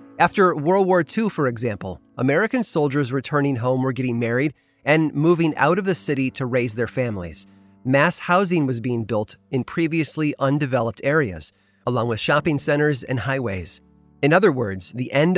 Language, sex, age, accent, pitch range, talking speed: English, male, 30-49, American, 120-155 Hz, 170 wpm